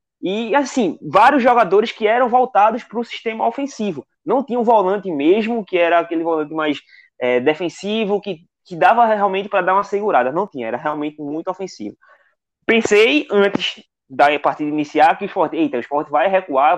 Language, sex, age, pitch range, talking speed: Portuguese, male, 20-39, 150-215 Hz, 165 wpm